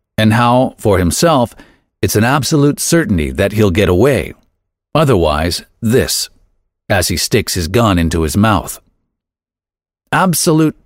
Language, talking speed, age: English, 125 wpm, 50-69